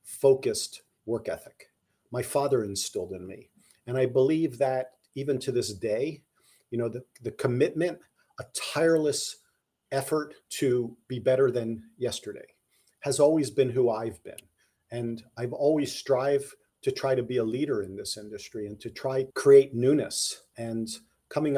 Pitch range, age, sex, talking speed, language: 105-135 Hz, 40-59, male, 155 wpm, English